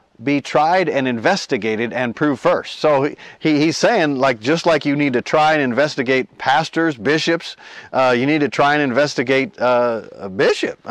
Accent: American